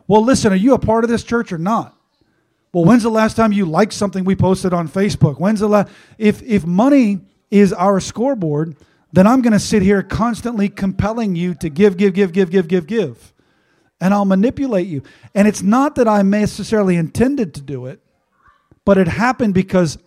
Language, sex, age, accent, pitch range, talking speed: English, male, 40-59, American, 175-225 Hz, 200 wpm